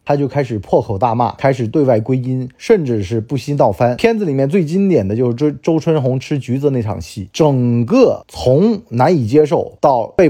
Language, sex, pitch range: Chinese, male, 115-170 Hz